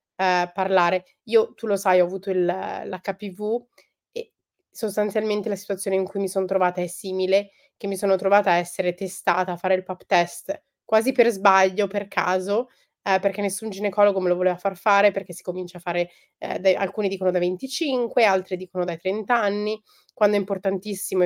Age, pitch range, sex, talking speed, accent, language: 20-39, 180-205 Hz, female, 185 wpm, native, Italian